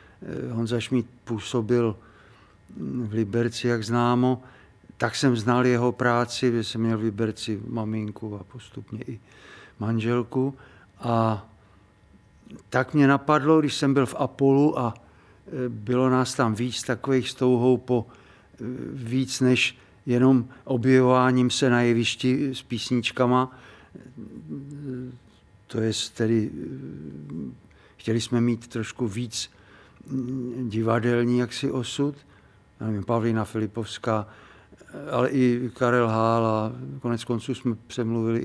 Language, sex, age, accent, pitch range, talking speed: Czech, male, 50-69, native, 110-130 Hz, 110 wpm